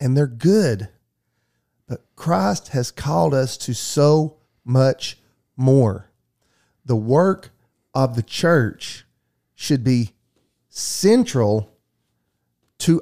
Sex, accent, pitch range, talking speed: male, American, 115-160 Hz, 95 wpm